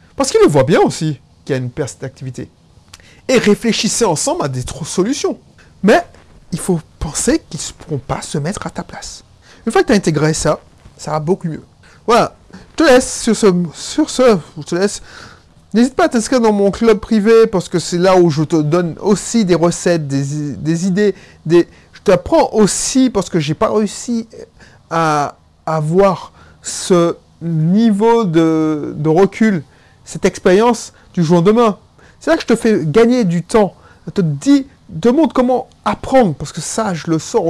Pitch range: 150-210 Hz